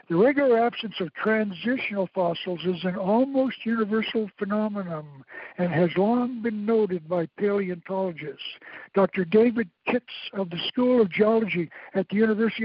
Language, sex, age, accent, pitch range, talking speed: English, male, 60-79, American, 180-235 Hz, 140 wpm